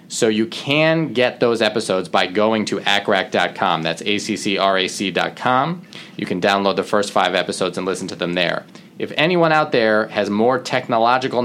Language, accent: English, American